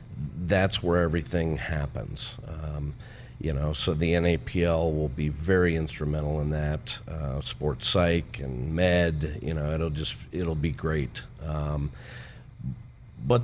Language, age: English, 50-69